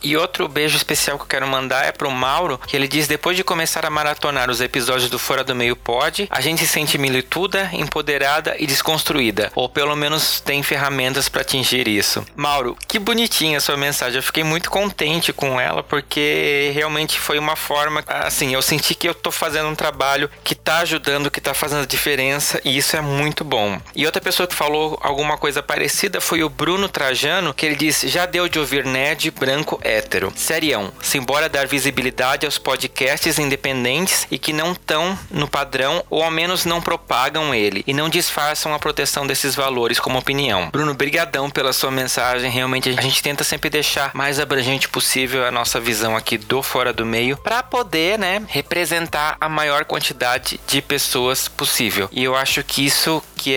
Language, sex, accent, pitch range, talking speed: Portuguese, male, Brazilian, 130-155 Hz, 190 wpm